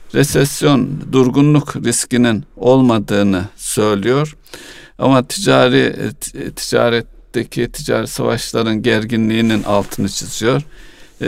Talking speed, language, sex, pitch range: 70 wpm, Turkish, male, 110-135 Hz